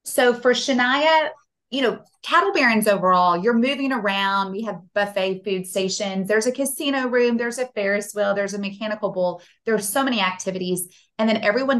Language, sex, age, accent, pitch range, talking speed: English, female, 30-49, American, 185-225 Hz, 180 wpm